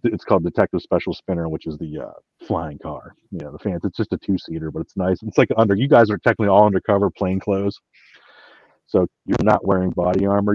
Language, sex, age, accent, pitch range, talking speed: English, male, 30-49, American, 90-110 Hz, 220 wpm